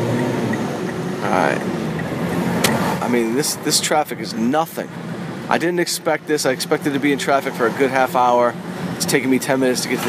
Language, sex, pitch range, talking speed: English, male, 120-160 Hz, 185 wpm